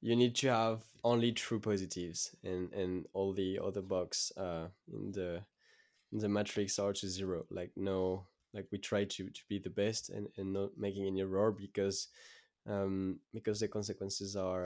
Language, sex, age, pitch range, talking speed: English, male, 20-39, 95-110 Hz, 180 wpm